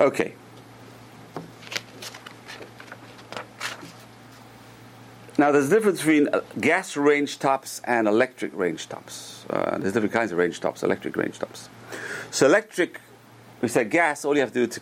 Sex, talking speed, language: male, 140 wpm, English